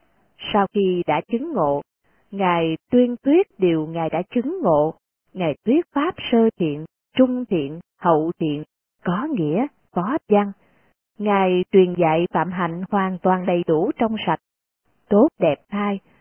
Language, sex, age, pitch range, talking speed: Vietnamese, female, 20-39, 175-245 Hz, 150 wpm